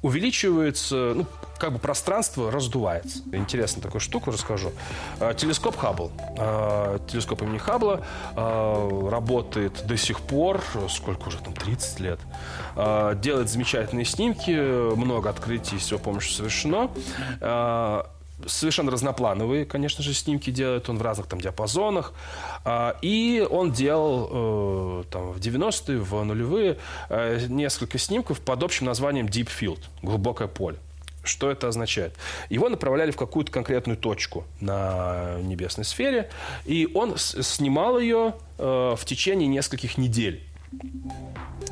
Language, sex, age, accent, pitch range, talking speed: Russian, male, 20-39, native, 95-135 Hz, 110 wpm